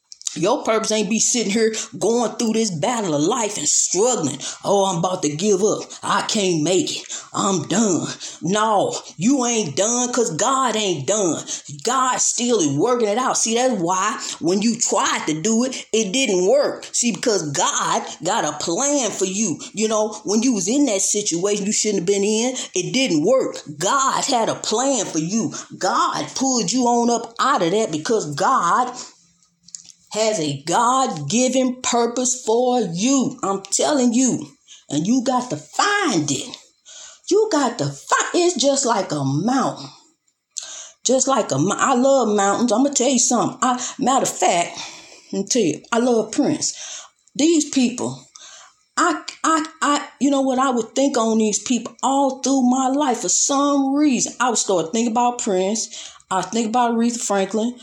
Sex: female